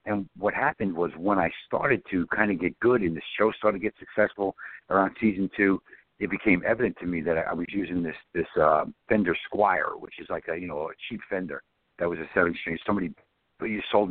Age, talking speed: 60-79, 230 wpm